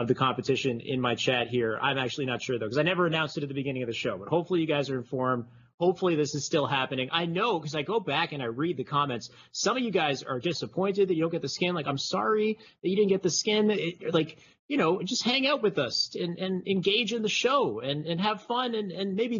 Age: 30-49